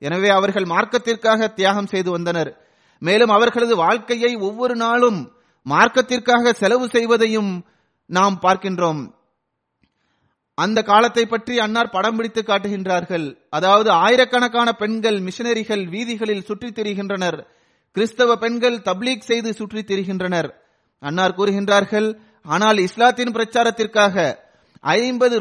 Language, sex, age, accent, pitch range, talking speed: Tamil, male, 30-49, native, 200-235 Hz, 80 wpm